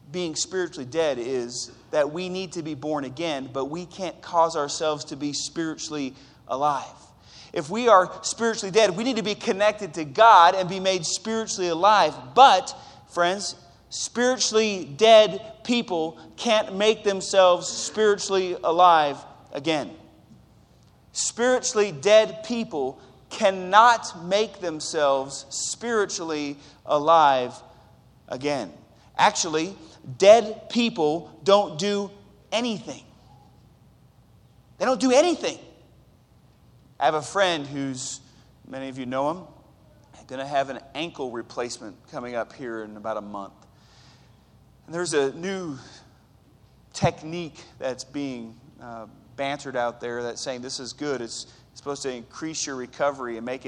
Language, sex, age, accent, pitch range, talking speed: English, male, 30-49, American, 130-195 Hz, 130 wpm